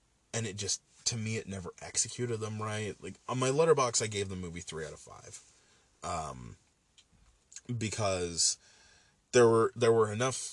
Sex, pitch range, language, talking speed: male, 90-120 Hz, English, 165 wpm